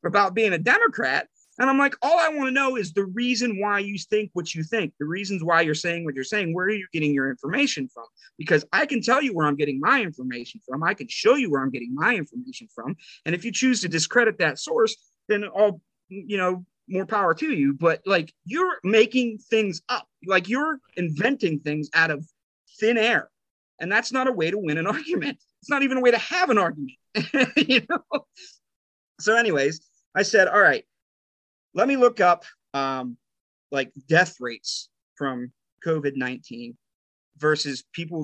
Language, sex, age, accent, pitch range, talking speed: English, male, 30-49, American, 150-235 Hz, 195 wpm